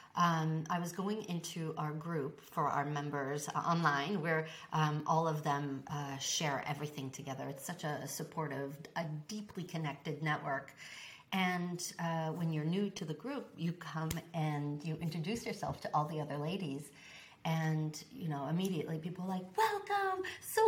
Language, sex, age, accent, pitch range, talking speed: English, female, 40-59, American, 150-195 Hz, 165 wpm